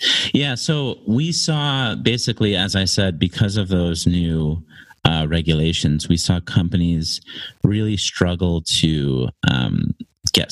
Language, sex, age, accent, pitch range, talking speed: English, male, 30-49, American, 75-95 Hz, 125 wpm